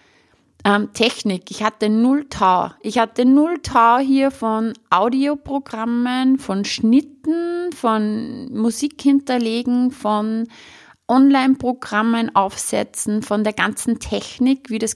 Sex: female